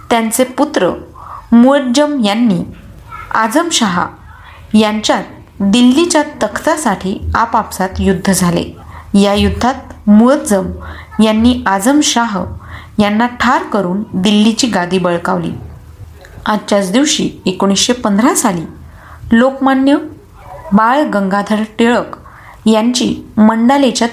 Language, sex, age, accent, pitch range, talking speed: Marathi, female, 30-49, native, 195-255 Hz, 80 wpm